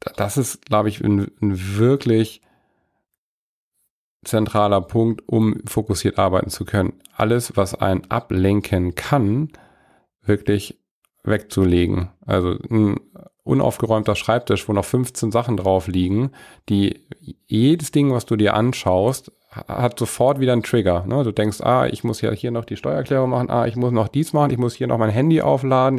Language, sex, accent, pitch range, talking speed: German, male, German, 100-125 Hz, 150 wpm